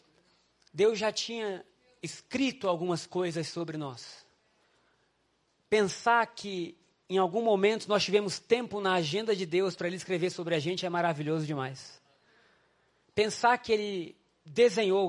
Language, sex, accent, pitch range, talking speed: Portuguese, male, Brazilian, 180-220 Hz, 130 wpm